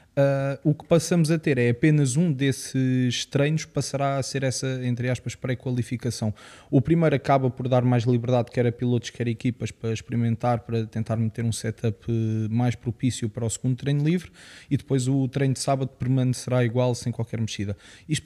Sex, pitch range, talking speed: male, 120-145 Hz, 185 wpm